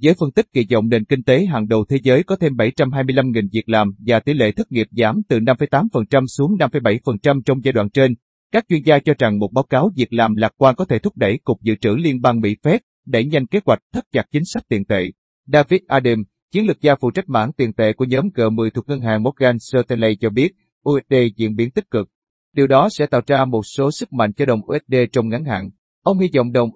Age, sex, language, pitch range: 30-49, male, Vietnamese, 110-140 Hz